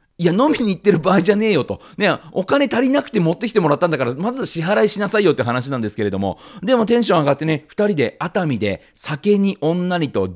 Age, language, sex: 40-59, Japanese, male